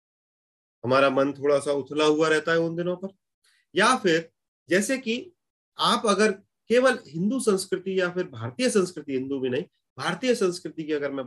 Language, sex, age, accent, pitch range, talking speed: Hindi, male, 30-49, native, 130-190 Hz, 190 wpm